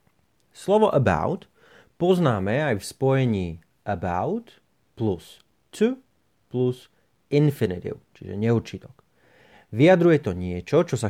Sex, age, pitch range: male, 30-49, 105-150 Hz